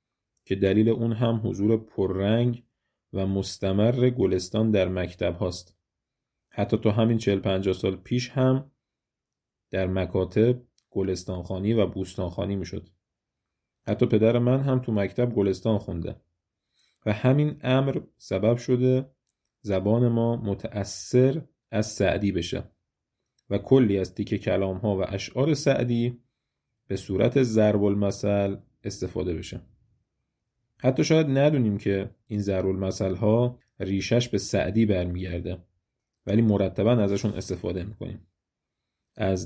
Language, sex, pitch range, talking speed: Persian, male, 95-120 Hz, 120 wpm